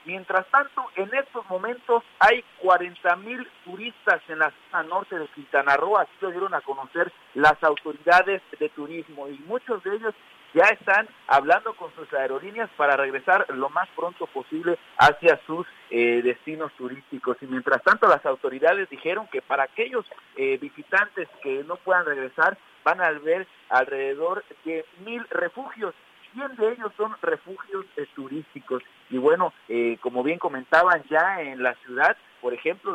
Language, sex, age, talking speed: Spanish, male, 50-69, 155 wpm